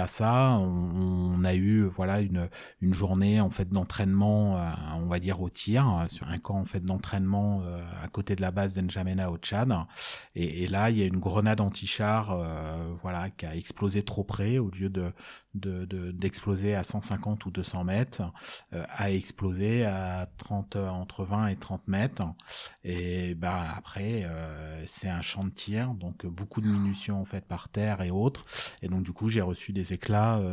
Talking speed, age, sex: 190 wpm, 30-49, male